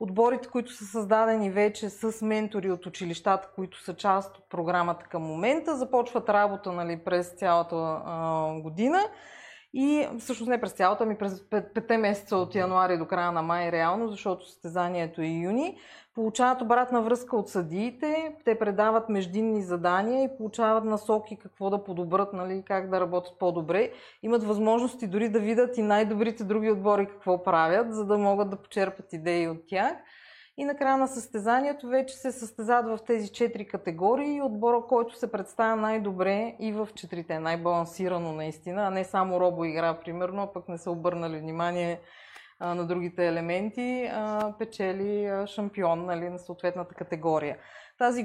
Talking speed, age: 155 wpm, 30-49